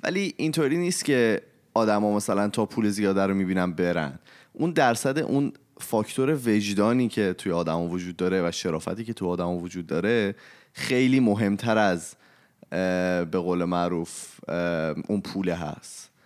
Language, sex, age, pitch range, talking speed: Persian, male, 30-49, 95-125 Hz, 140 wpm